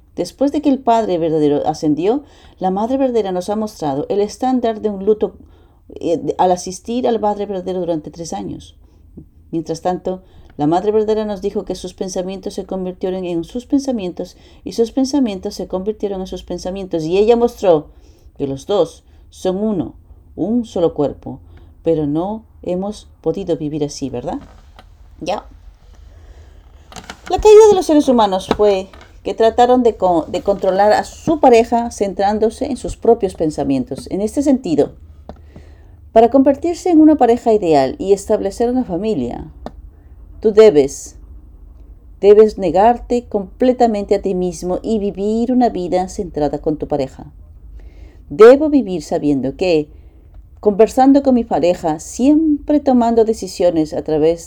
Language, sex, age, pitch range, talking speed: English, female, 40-59, 150-225 Hz, 145 wpm